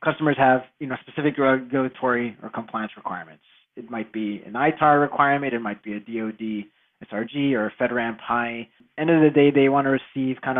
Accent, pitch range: American, 115-145 Hz